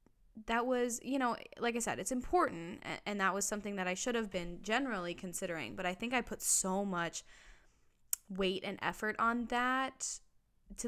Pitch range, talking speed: 175-215 Hz, 180 wpm